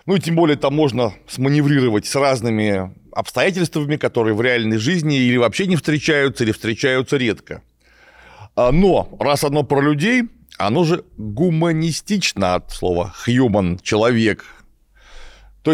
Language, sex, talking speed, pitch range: Russian, male, 130 wpm, 115-155 Hz